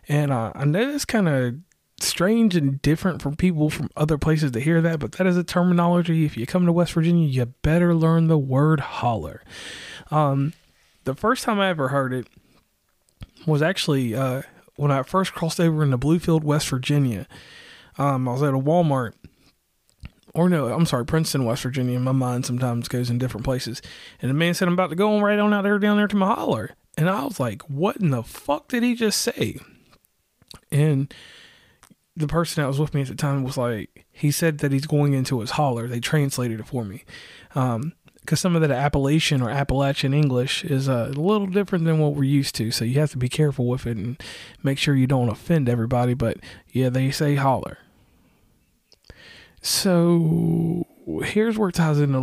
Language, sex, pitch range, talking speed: English, male, 125-165 Hz, 200 wpm